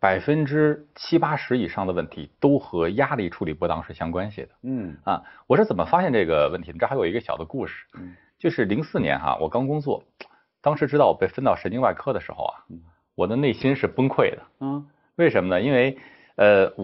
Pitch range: 95-150 Hz